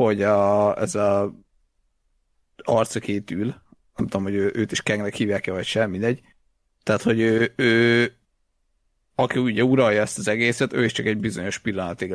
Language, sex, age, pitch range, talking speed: Hungarian, male, 50-69, 100-115 Hz, 165 wpm